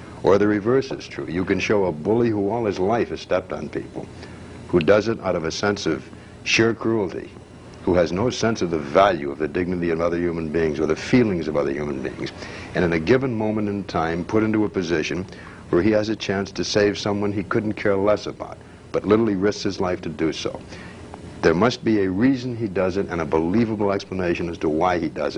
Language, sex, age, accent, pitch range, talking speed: English, male, 60-79, American, 80-100 Hz, 230 wpm